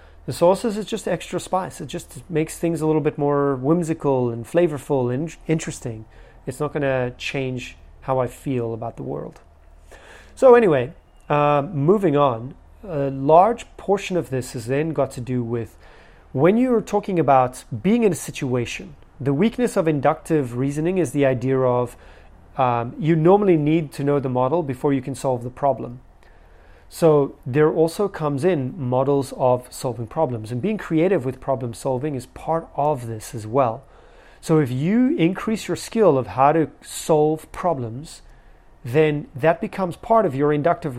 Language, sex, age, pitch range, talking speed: English, male, 30-49, 125-165 Hz, 170 wpm